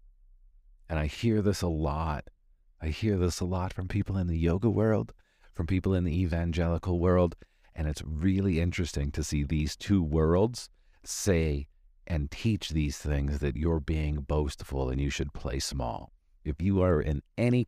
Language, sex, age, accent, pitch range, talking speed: English, male, 40-59, American, 70-90 Hz, 175 wpm